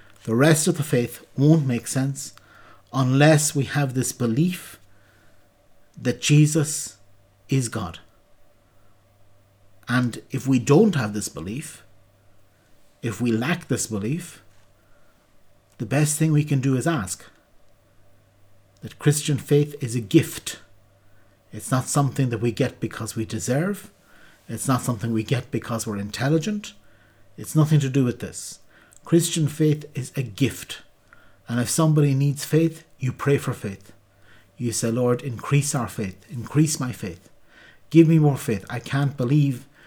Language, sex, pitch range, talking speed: English, male, 110-145 Hz, 145 wpm